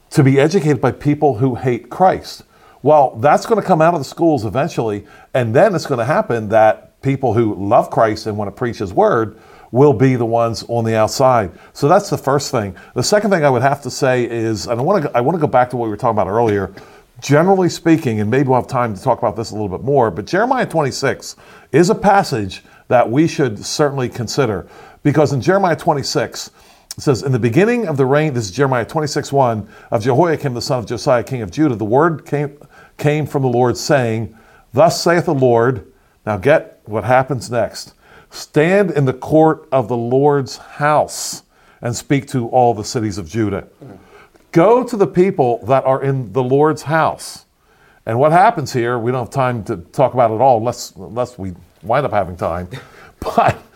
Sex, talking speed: male, 210 wpm